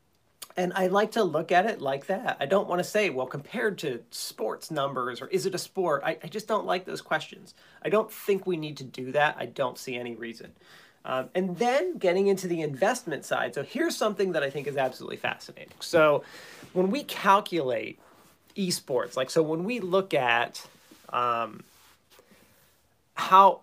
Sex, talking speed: male, 190 wpm